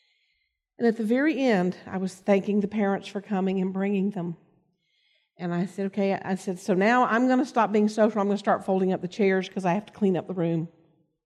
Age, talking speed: 50-69, 240 wpm